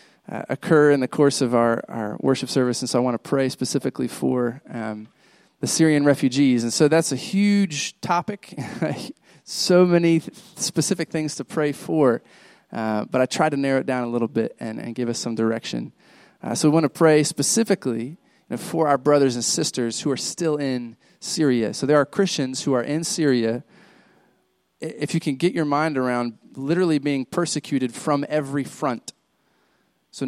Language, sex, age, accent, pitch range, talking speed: English, male, 30-49, American, 125-155 Hz, 180 wpm